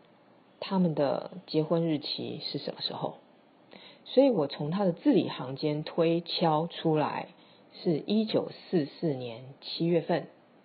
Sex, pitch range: female, 155-205 Hz